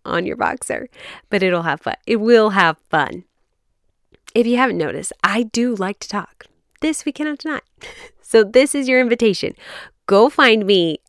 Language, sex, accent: English, female, American